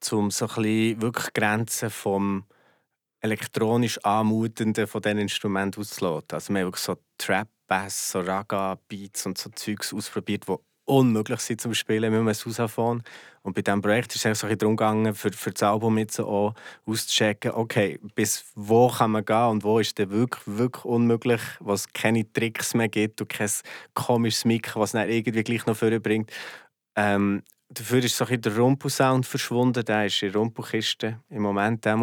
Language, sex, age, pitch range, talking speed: German, male, 20-39, 100-115 Hz, 170 wpm